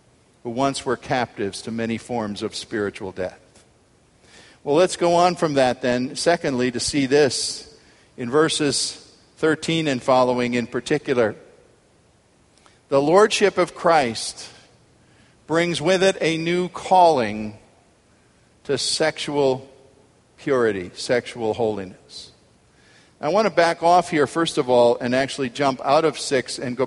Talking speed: 135 wpm